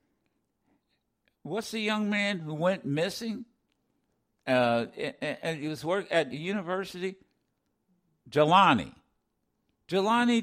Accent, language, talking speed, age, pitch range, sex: American, English, 100 wpm, 60-79, 140-225 Hz, male